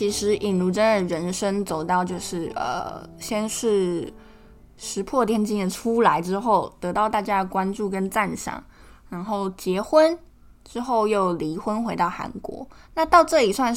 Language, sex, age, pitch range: Chinese, female, 20-39, 185-235 Hz